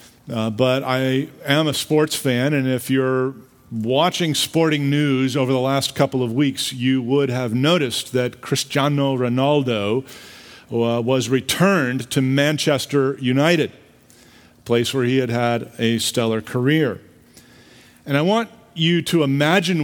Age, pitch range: 50-69, 125-160 Hz